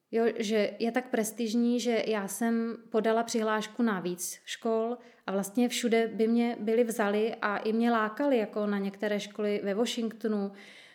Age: 30-49